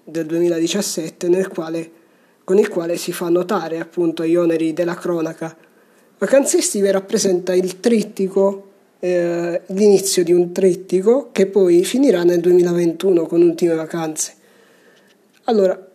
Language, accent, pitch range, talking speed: Italian, native, 170-195 Hz, 130 wpm